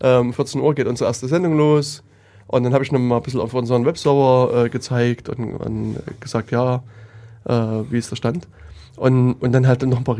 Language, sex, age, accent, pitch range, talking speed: German, male, 20-39, German, 115-135 Hz, 210 wpm